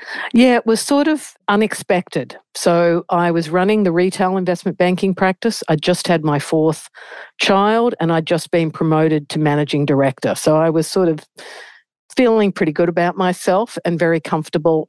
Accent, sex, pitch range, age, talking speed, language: Australian, female, 160-185 Hz, 50-69, 170 wpm, English